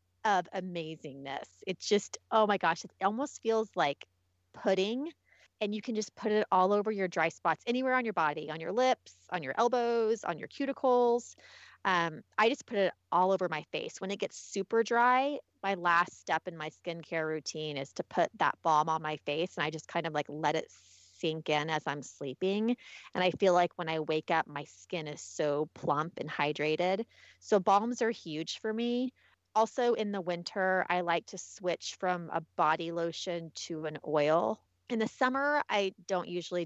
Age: 30-49